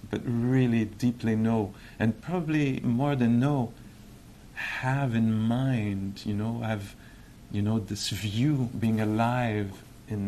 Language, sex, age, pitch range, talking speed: English, male, 50-69, 105-120 Hz, 135 wpm